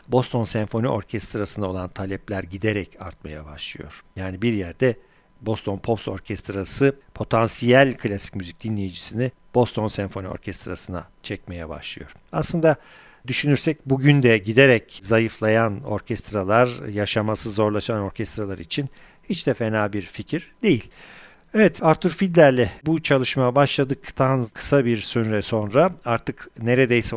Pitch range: 100-130 Hz